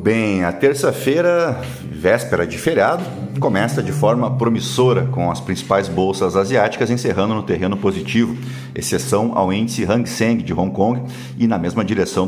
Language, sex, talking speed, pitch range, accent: Portuguese, male, 150 wpm, 95-125 Hz, Brazilian